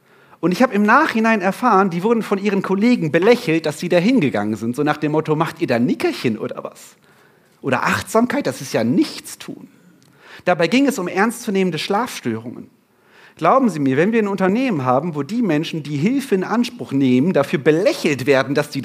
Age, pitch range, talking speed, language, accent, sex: 40-59, 135-185 Hz, 195 wpm, German, German, male